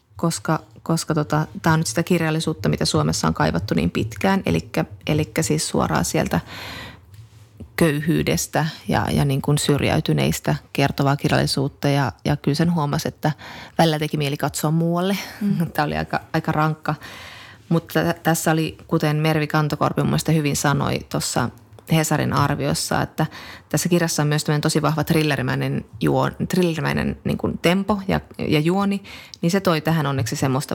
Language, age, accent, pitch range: Finnish, 20-39, native, 140-170 Hz